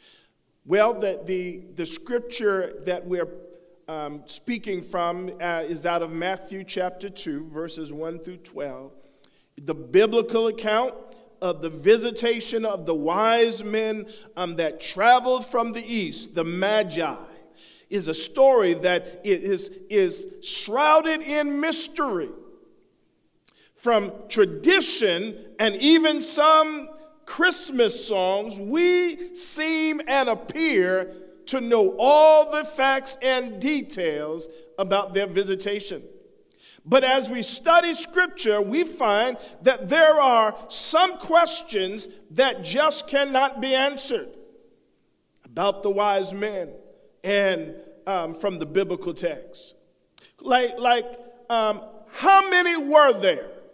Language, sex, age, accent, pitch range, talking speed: English, male, 50-69, American, 190-310 Hz, 115 wpm